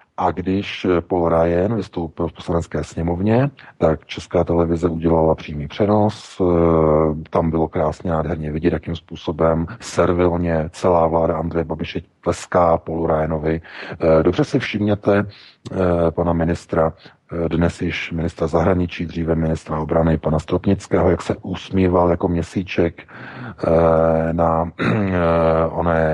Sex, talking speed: male, 115 wpm